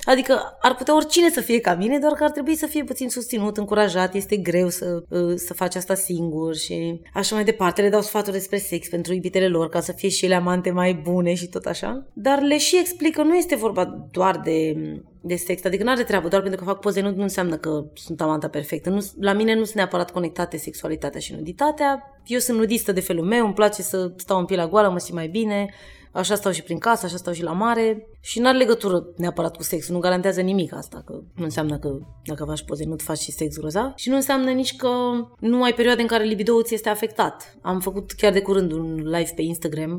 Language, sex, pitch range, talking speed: Romanian, female, 175-235 Hz, 235 wpm